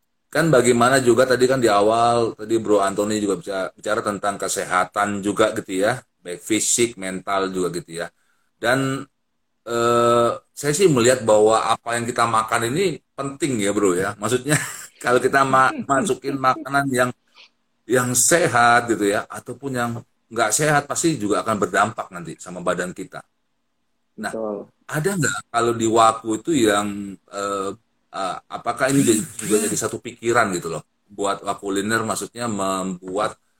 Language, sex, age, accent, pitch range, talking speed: Indonesian, male, 30-49, native, 100-125 Hz, 155 wpm